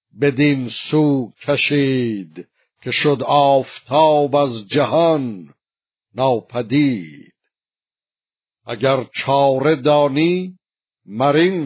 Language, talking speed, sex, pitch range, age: Persian, 65 wpm, male, 120-145 Hz, 60-79